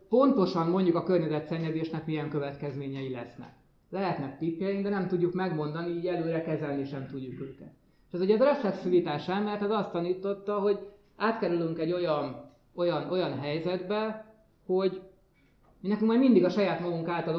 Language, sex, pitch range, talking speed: Hungarian, male, 145-190 Hz, 145 wpm